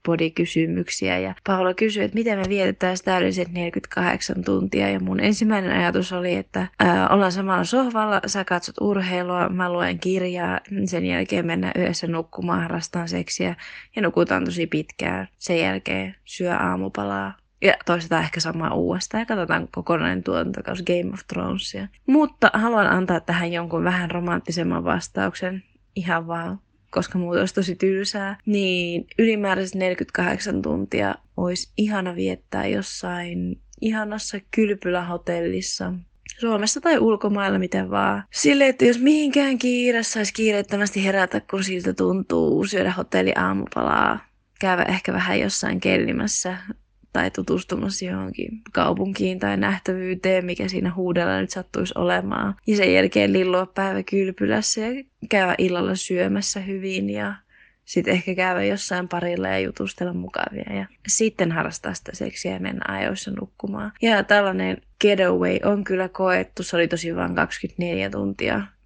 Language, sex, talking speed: Finnish, female, 135 wpm